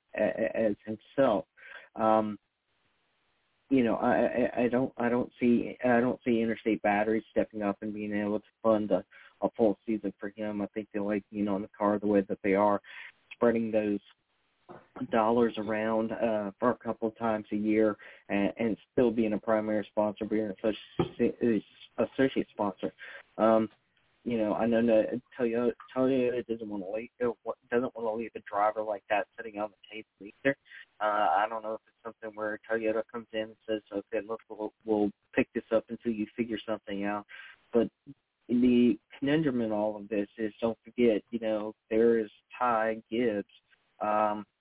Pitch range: 105-115 Hz